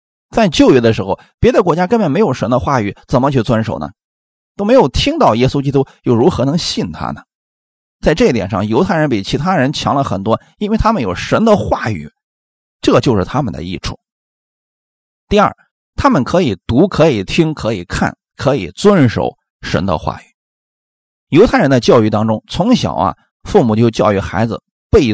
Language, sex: Chinese, male